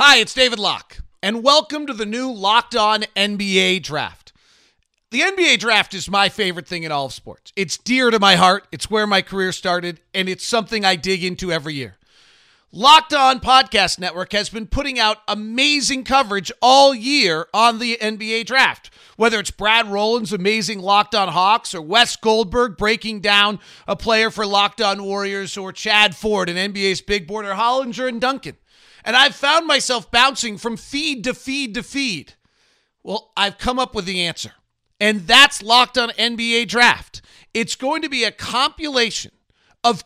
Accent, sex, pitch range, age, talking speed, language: American, male, 200-260 Hz, 40-59, 180 wpm, English